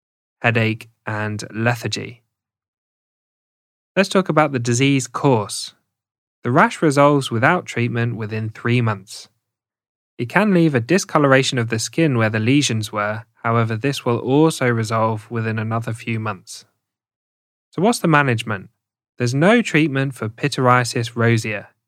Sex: male